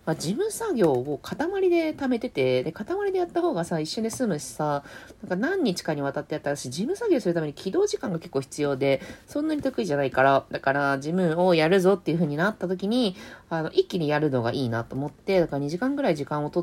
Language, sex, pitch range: Japanese, female, 140-220 Hz